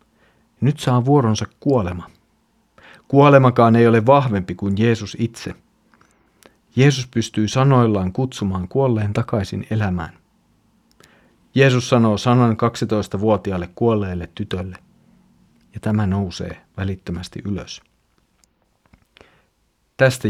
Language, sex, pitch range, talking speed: Finnish, male, 90-125 Hz, 90 wpm